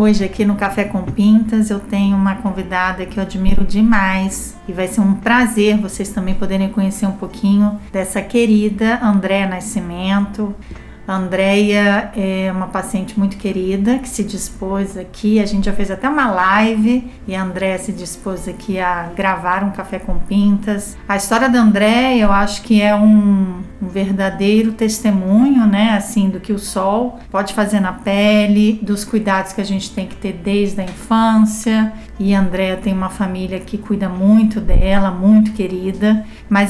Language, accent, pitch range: Portuguese, Brazilian, 195-220 Hz